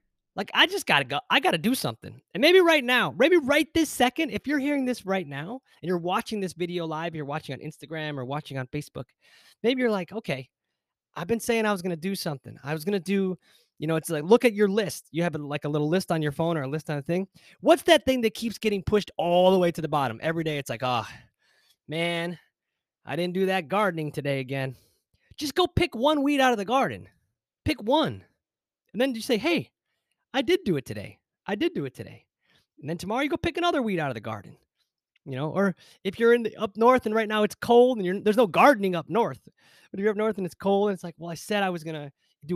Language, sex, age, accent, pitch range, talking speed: English, male, 20-39, American, 150-235 Hz, 260 wpm